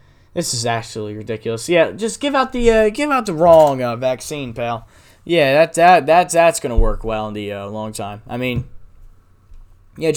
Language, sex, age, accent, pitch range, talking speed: English, male, 10-29, American, 110-155 Hz, 195 wpm